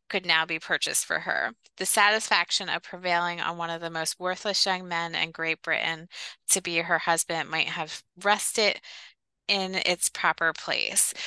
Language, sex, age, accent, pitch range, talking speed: English, female, 20-39, American, 175-210 Hz, 170 wpm